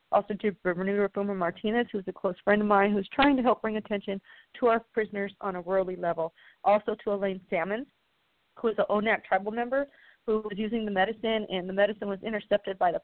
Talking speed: 215 wpm